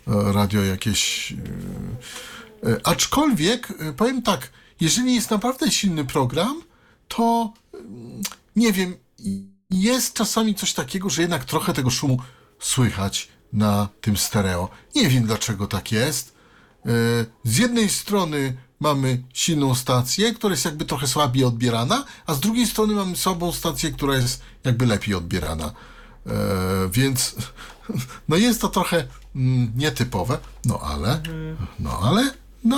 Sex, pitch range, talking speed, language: male, 115-175 Hz, 120 wpm, Polish